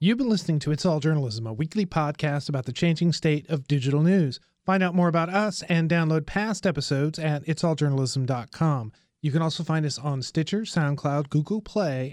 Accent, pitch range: American, 145-180 Hz